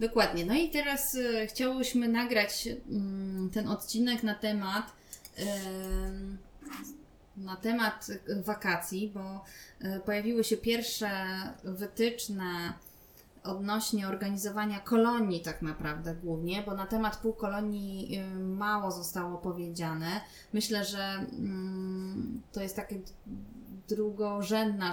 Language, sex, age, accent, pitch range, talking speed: Polish, female, 20-39, native, 190-215 Hz, 90 wpm